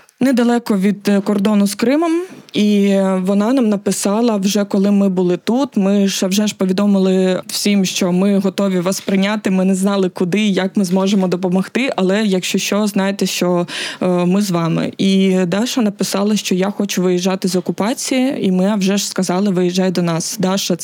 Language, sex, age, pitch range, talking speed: Ukrainian, female, 20-39, 185-205 Hz, 175 wpm